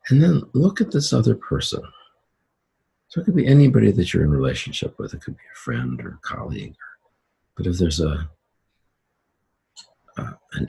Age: 50-69